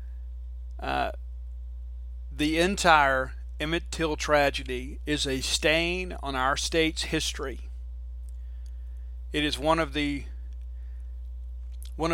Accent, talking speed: American, 95 wpm